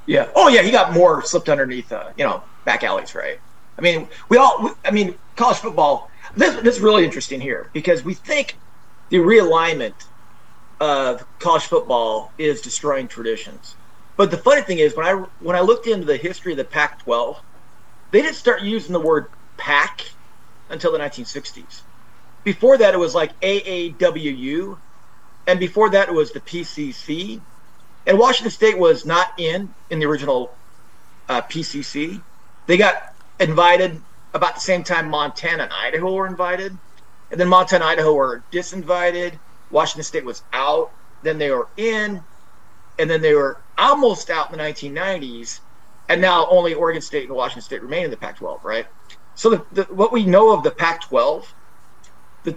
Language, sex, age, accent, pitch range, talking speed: English, male, 40-59, American, 155-215 Hz, 165 wpm